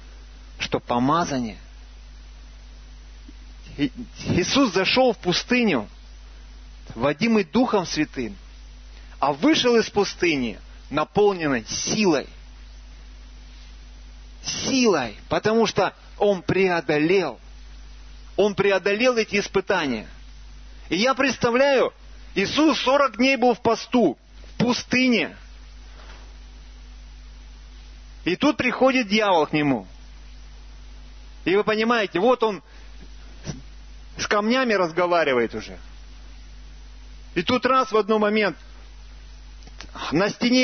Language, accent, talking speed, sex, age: Russian, native, 85 wpm, male, 30-49